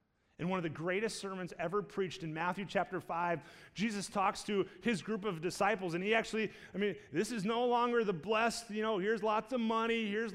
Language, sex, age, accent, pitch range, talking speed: English, male, 30-49, American, 185-245 Hz, 215 wpm